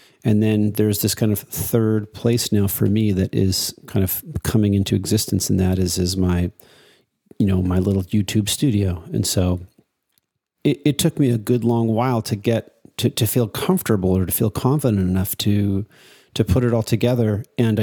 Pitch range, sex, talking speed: 100-125 Hz, male, 190 wpm